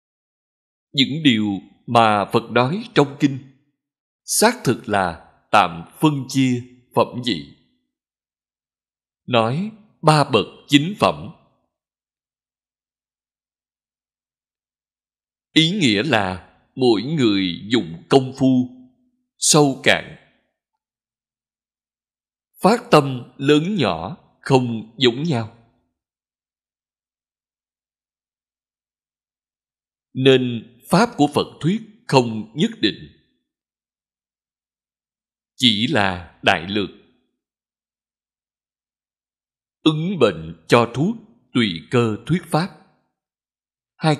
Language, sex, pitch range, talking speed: Vietnamese, male, 110-160 Hz, 80 wpm